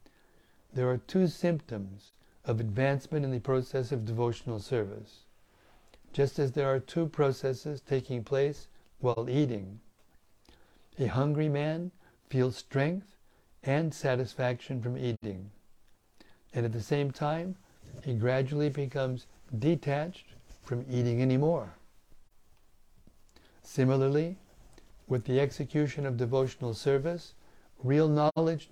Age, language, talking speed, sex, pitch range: 60-79, English, 110 wpm, male, 115-145 Hz